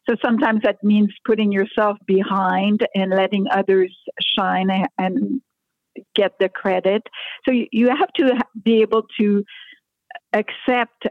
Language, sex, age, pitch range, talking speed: English, female, 50-69, 185-230 Hz, 125 wpm